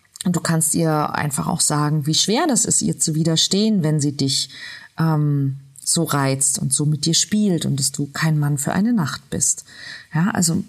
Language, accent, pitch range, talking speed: German, German, 150-190 Hz, 200 wpm